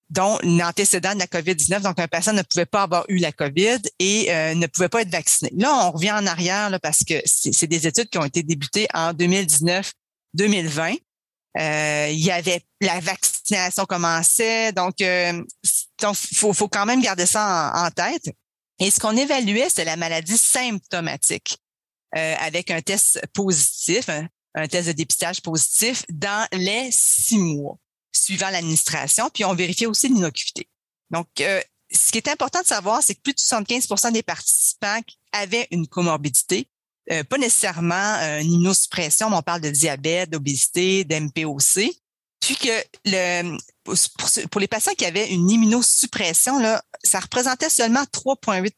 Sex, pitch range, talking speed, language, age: female, 170-215 Hz, 170 wpm, English, 40-59